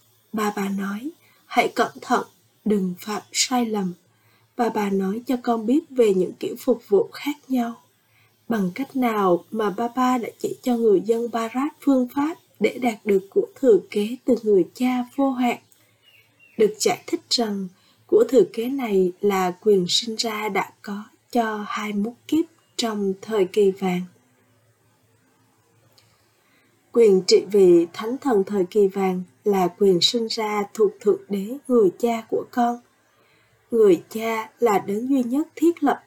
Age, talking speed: 20-39, 160 wpm